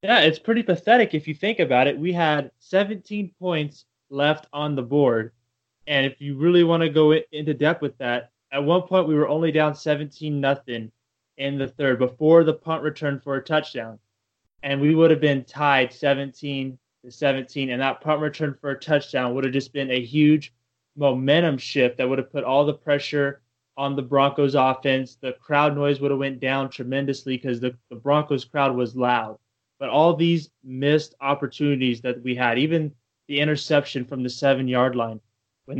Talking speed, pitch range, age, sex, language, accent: 195 wpm, 130-150 Hz, 20-39, male, English, American